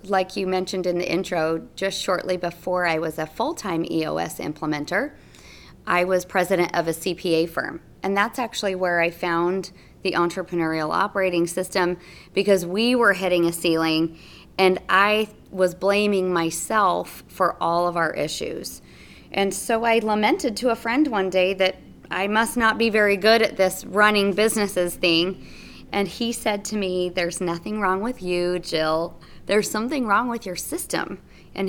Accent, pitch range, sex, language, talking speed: American, 175-215 Hz, female, English, 165 wpm